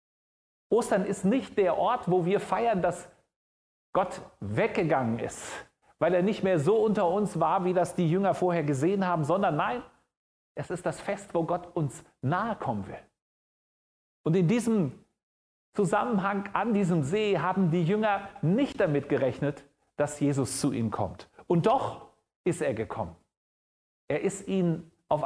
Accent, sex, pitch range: German, male, 155-205 Hz